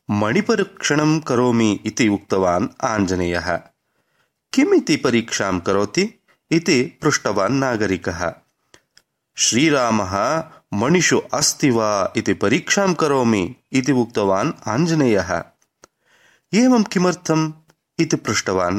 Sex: male